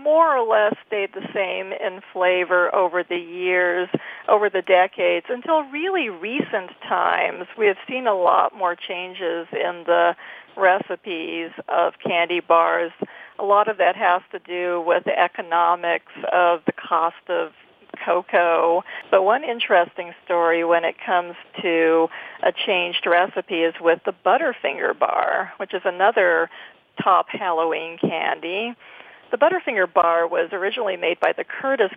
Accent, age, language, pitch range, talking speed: American, 40-59, English, 170-220 Hz, 145 wpm